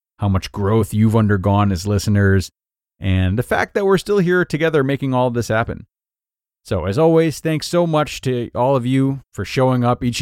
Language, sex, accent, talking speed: English, male, American, 200 wpm